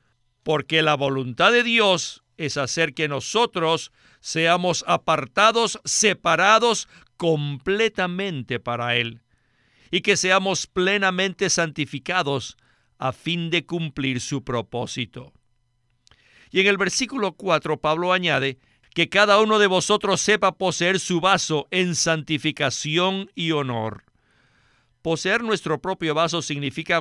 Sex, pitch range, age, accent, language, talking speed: male, 130-185 Hz, 50-69, Mexican, Spanish, 115 wpm